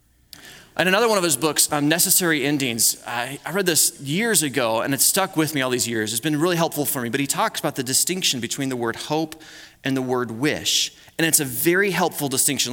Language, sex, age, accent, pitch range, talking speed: English, male, 30-49, American, 130-175 Hz, 220 wpm